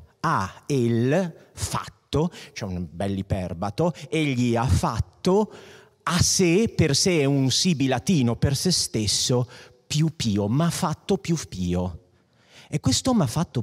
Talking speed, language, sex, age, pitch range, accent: 145 wpm, Italian, male, 30-49, 115-165 Hz, native